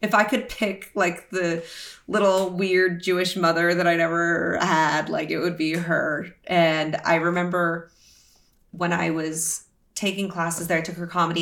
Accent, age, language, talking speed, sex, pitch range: American, 30-49, English, 170 wpm, female, 160-185 Hz